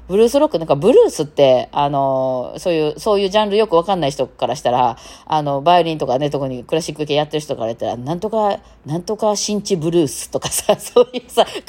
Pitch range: 140-215 Hz